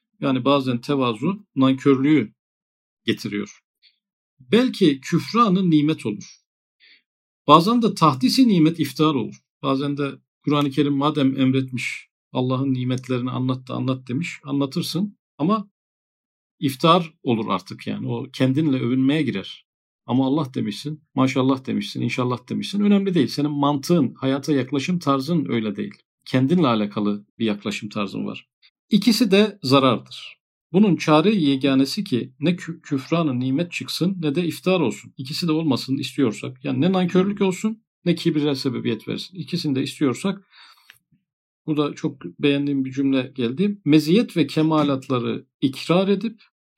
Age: 50-69